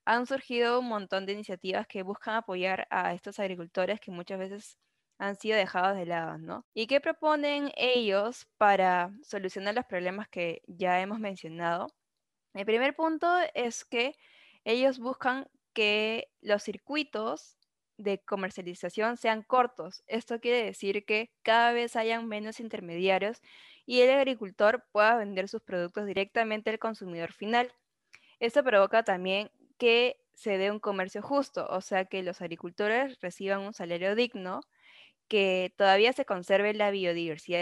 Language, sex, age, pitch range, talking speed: Spanish, female, 10-29, 190-235 Hz, 145 wpm